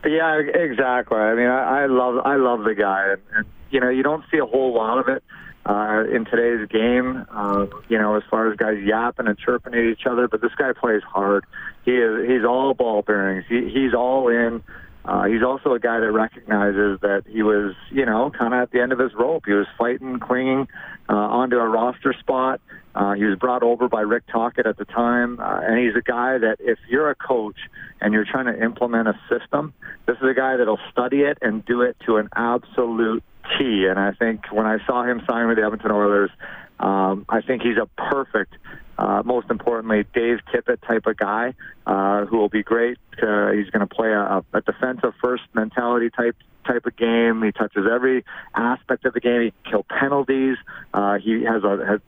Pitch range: 105-125 Hz